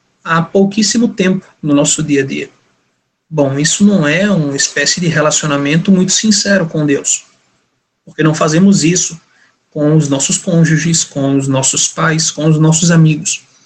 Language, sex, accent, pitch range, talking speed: Portuguese, male, Brazilian, 150-195 Hz, 160 wpm